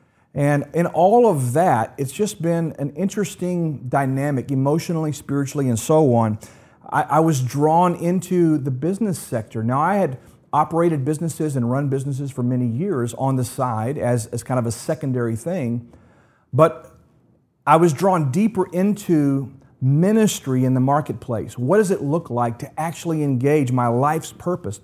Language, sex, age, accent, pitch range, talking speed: English, male, 40-59, American, 120-165 Hz, 160 wpm